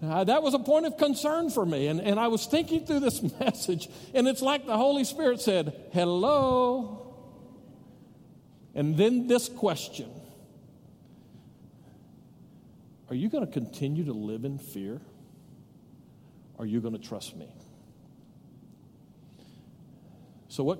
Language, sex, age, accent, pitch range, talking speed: English, male, 50-69, American, 135-195 Hz, 135 wpm